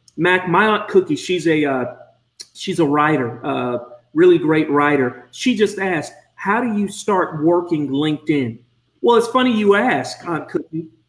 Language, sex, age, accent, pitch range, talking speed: English, male, 40-59, American, 140-200 Hz, 170 wpm